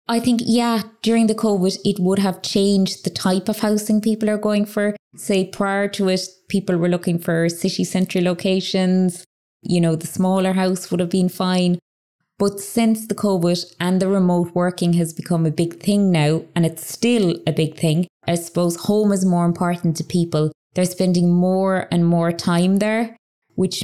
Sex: female